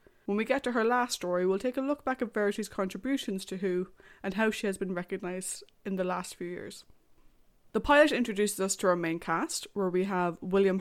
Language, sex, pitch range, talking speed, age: English, female, 185-240 Hz, 220 wpm, 20-39